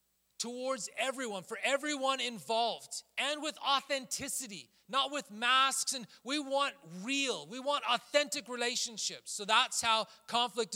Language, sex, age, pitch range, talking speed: English, male, 30-49, 155-250 Hz, 130 wpm